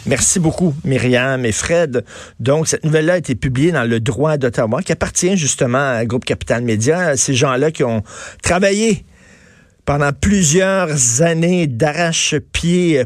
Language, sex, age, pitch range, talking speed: French, male, 50-69, 120-155 Hz, 140 wpm